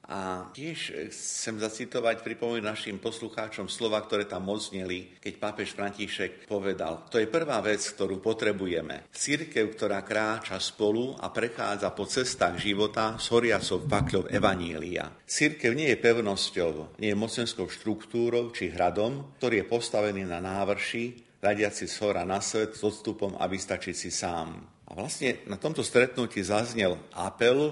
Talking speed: 145 wpm